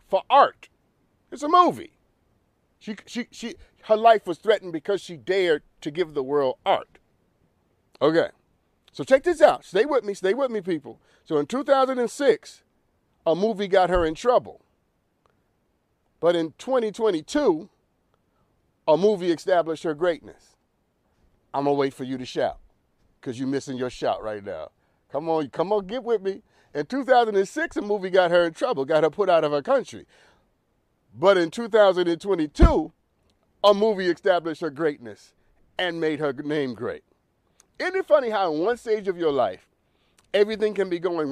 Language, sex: English, male